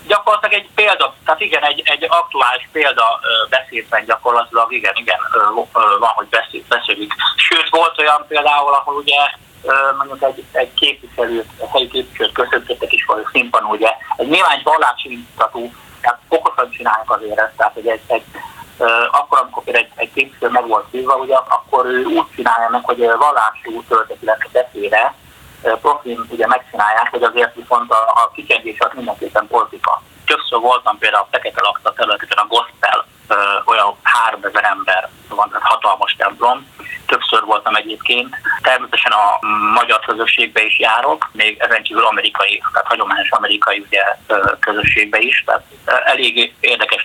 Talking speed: 145 wpm